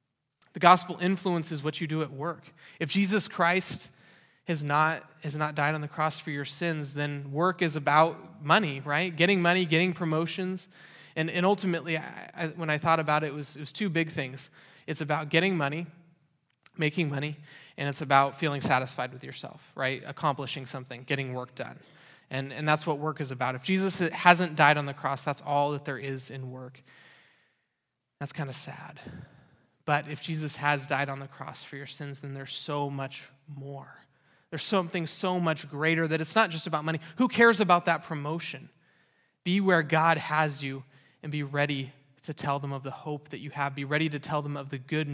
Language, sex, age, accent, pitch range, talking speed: English, male, 20-39, American, 140-165 Hz, 200 wpm